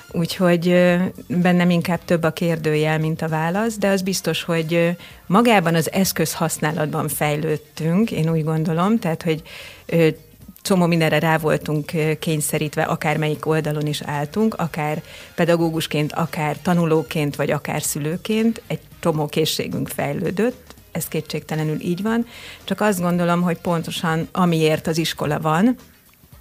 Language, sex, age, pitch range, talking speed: Hungarian, female, 30-49, 155-180 Hz, 135 wpm